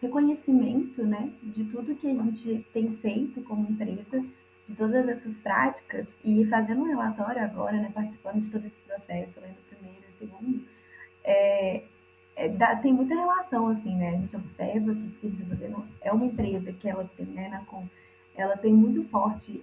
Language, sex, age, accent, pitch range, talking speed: Portuguese, female, 20-39, Brazilian, 195-235 Hz, 175 wpm